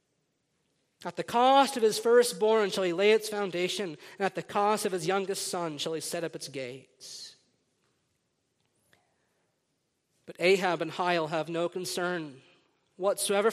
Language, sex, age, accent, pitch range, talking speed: English, male, 40-59, American, 185-245 Hz, 145 wpm